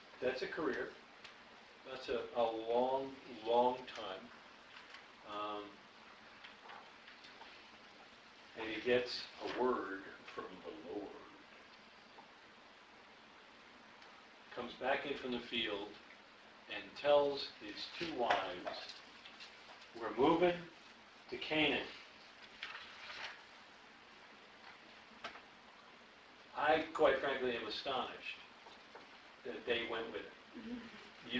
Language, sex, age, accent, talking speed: English, male, 50-69, American, 85 wpm